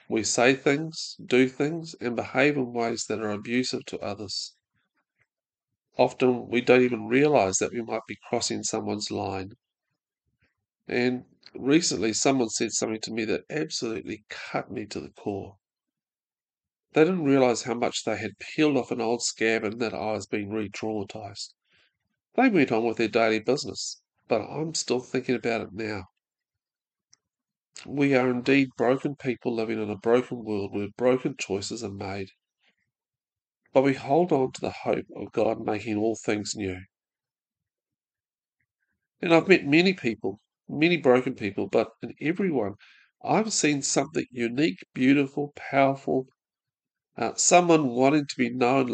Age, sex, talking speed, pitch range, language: 40-59, male, 150 wpm, 110-135 Hz, English